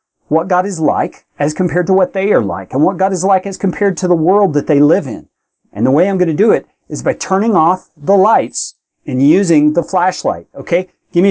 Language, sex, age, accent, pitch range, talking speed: English, male, 40-59, American, 155-215 Hz, 245 wpm